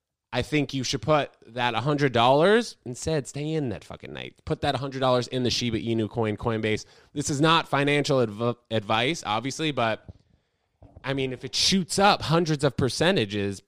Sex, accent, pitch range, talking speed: male, American, 105-140 Hz, 170 wpm